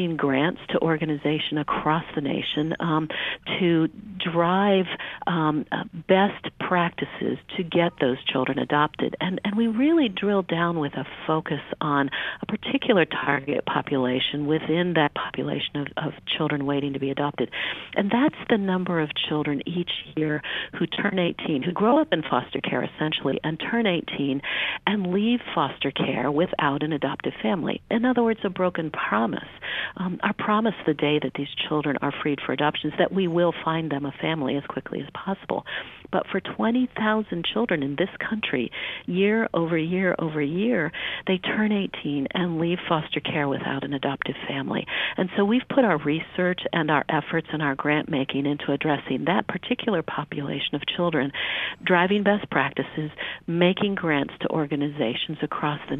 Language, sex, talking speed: English, female, 165 wpm